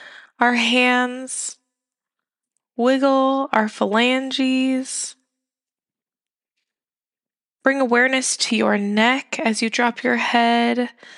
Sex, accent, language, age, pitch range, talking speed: female, American, English, 20-39, 220-255 Hz, 80 wpm